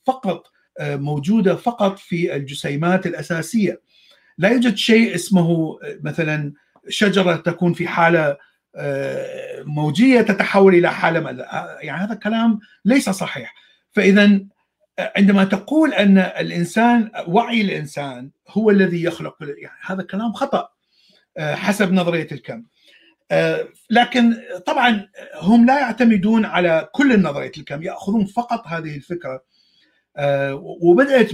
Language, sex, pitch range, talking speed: Arabic, male, 160-225 Hz, 105 wpm